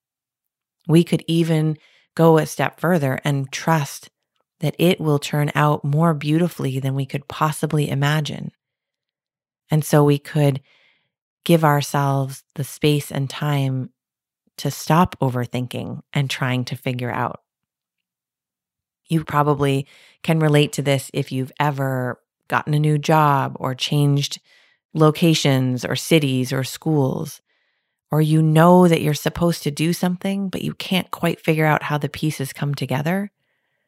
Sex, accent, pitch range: female, American, 140-160 Hz